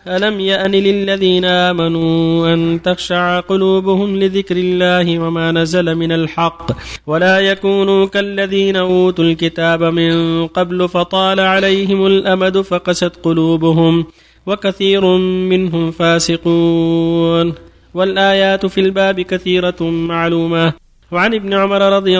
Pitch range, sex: 165-195 Hz, male